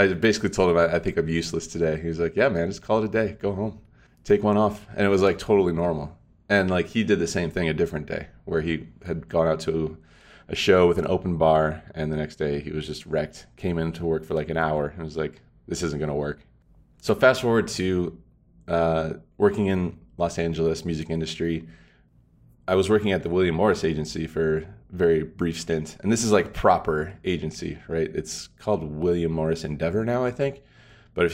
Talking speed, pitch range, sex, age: 225 wpm, 80-95 Hz, male, 20-39